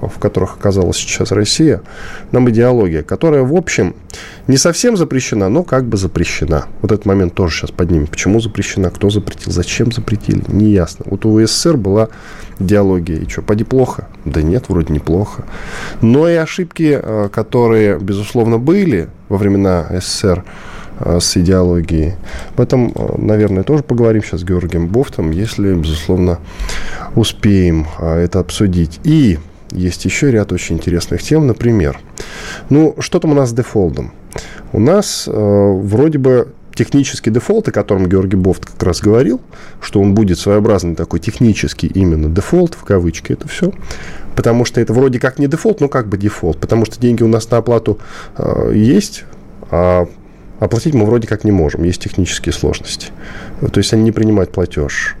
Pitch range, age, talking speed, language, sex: 90-120 Hz, 10-29, 160 wpm, Russian, male